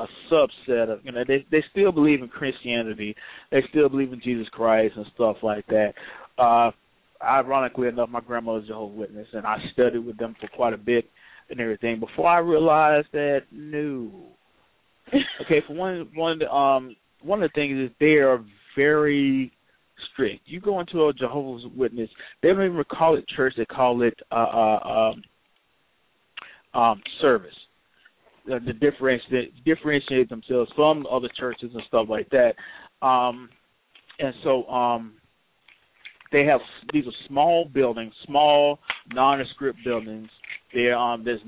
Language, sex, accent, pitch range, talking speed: English, male, American, 115-140 Hz, 155 wpm